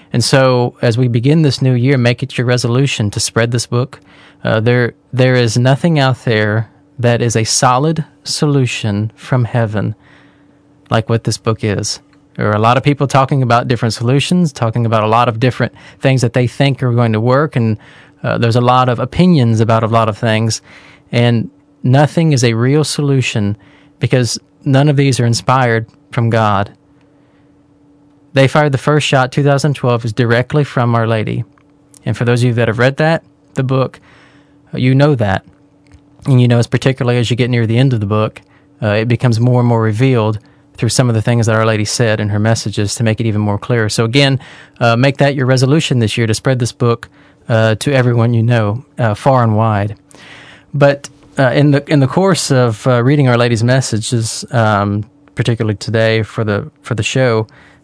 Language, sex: English, male